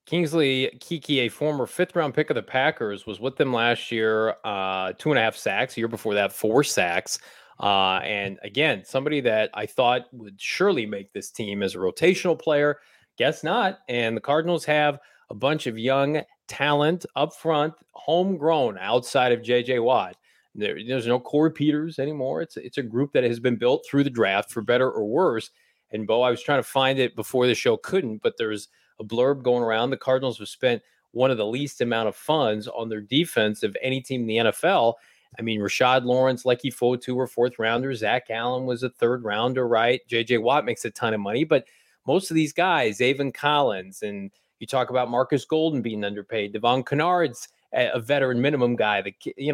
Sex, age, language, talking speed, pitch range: male, 30-49, English, 200 wpm, 115-155 Hz